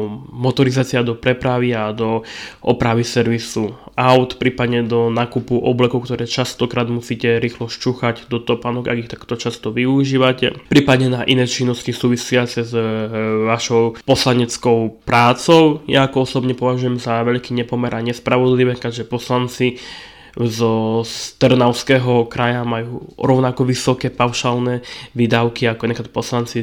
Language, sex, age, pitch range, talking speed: Slovak, male, 20-39, 115-125 Hz, 120 wpm